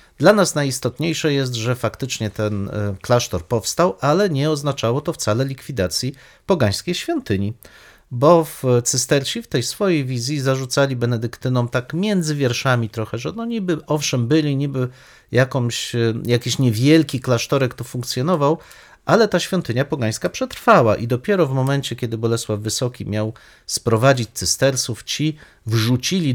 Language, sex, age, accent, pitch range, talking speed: Polish, male, 40-59, native, 105-140 Hz, 135 wpm